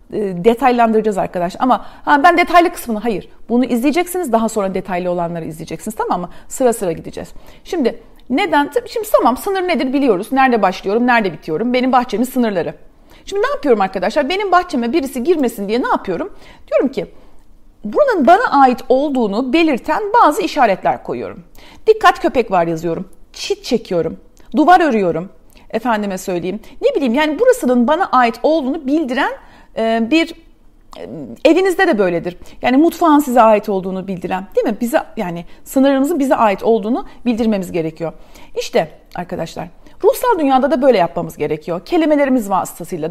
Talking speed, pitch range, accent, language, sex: 145 wpm, 200-320 Hz, native, Turkish, female